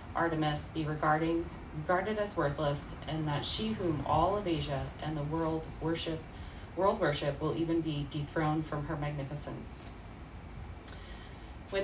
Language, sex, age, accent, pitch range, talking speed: English, female, 30-49, American, 140-170 Hz, 135 wpm